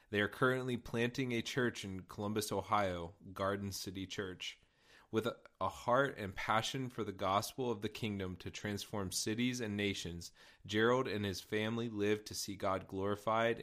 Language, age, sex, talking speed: English, 30-49, male, 165 wpm